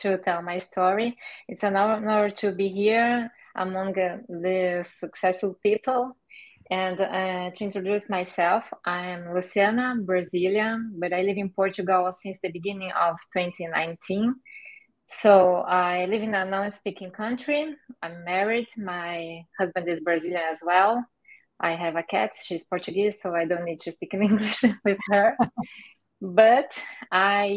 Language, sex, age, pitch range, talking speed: English, female, 20-39, 175-205 Hz, 150 wpm